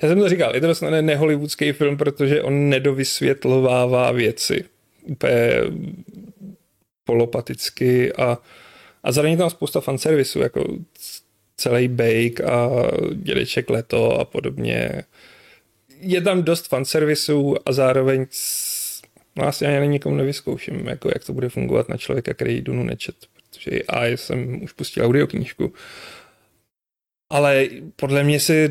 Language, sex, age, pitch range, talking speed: Czech, male, 30-49, 120-150 Hz, 125 wpm